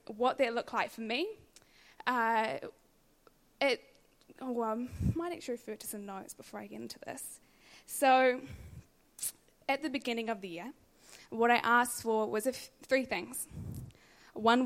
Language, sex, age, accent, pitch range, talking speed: English, female, 10-29, Australian, 215-255 Hz, 150 wpm